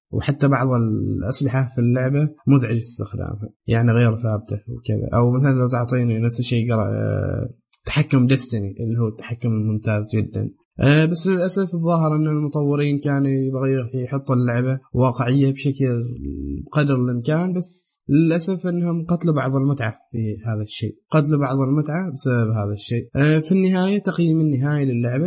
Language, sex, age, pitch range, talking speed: Arabic, male, 20-39, 115-150 Hz, 140 wpm